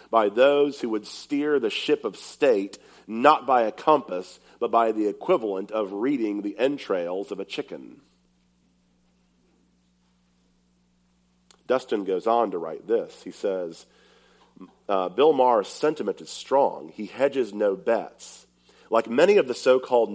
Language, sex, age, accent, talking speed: English, male, 40-59, American, 140 wpm